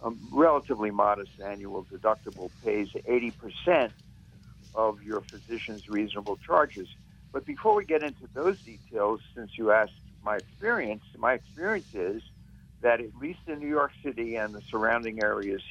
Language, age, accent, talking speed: English, 60-79, American, 145 wpm